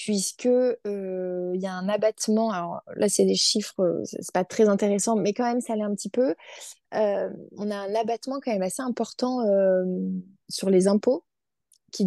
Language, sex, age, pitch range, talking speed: French, female, 20-39, 195-225 Hz, 190 wpm